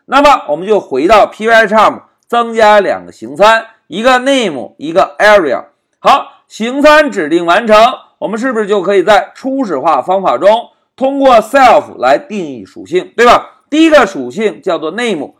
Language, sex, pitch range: Chinese, male, 205-290 Hz